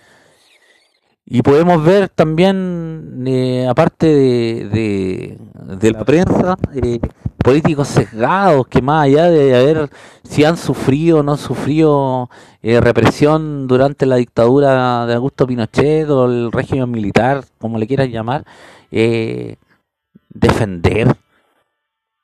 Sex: male